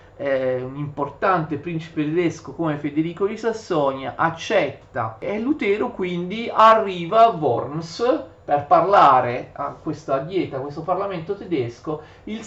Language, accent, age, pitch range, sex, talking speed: Italian, native, 40-59, 140-175 Hz, male, 120 wpm